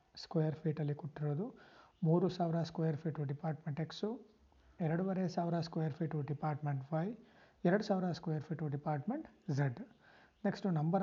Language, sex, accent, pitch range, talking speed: Kannada, male, native, 145-185 Hz, 125 wpm